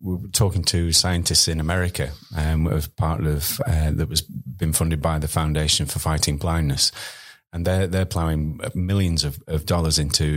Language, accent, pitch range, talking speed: English, British, 75-95 Hz, 180 wpm